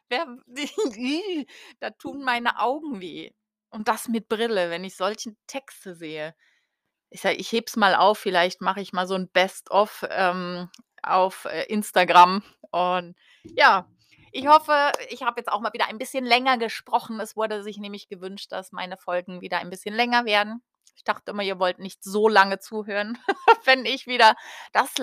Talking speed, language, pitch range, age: 175 wpm, German, 190-245 Hz, 30-49